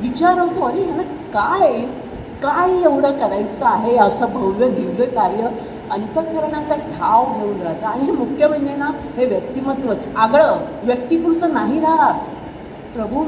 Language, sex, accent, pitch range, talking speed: Marathi, female, native, 245-315 Hz, 130 wpm